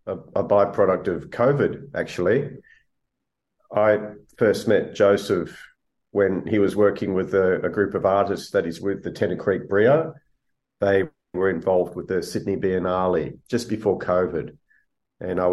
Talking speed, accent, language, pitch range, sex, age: 145 wpm, Australian, English, 95-115 Hz, male, 40-59